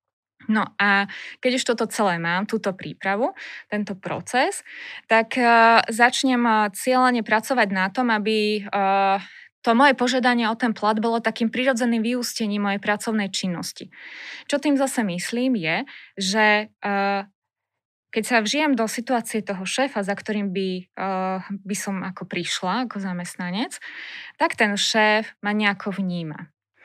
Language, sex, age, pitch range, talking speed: Slovak, female, 20-39, 195-235 Hz, 130 wpm